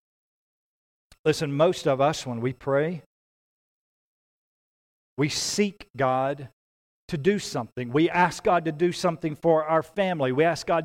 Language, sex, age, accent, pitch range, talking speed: English, male, 40-59, American, 165-235 Hz, 140 wpm